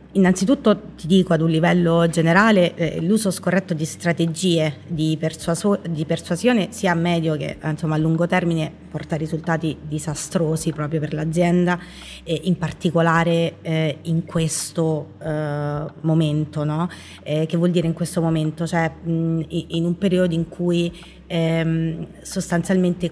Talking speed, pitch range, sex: 145 wpm, 160-180 Hz, female